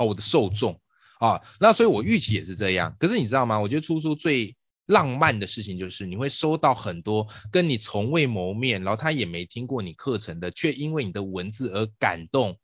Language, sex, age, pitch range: Chinese, male, 20-39, 100-135 Hz